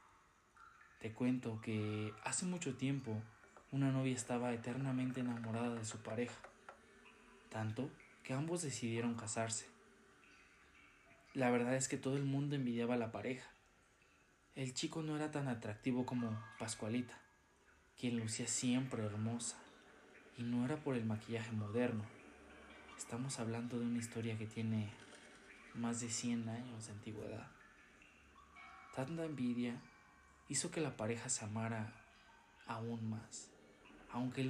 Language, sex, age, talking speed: Spanish, male, 20-39, 130 wpm